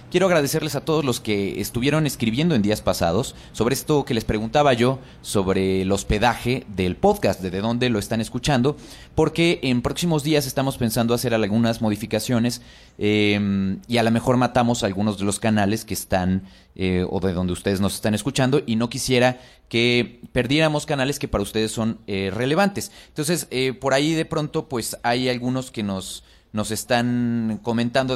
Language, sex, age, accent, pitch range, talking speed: Spanish, male, 30-49, Mexican, 105-140 Hz, 175 wpm